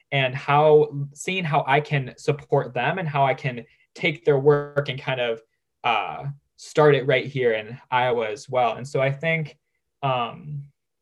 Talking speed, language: 175 wpm, English